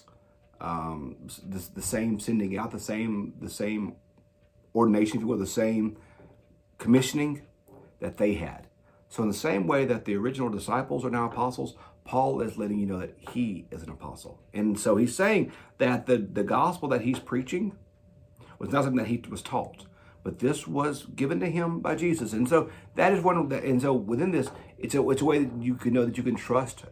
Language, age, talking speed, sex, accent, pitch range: English, 50-69, 205 wpm, male, American, 95-125 Hz